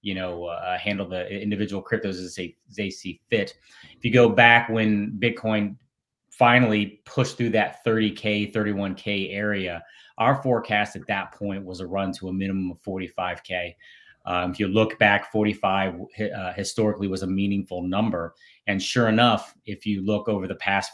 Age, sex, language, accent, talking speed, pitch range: 30-49, male, English, American, 165 wpm, 95-110 Hz